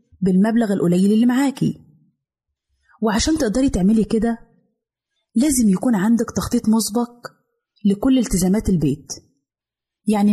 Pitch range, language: 195-245 Hz, Arabic